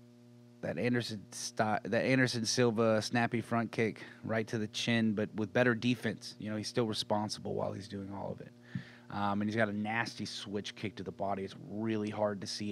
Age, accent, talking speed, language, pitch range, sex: 30-49, American, 210 wpm, English, 100-120 Hz, male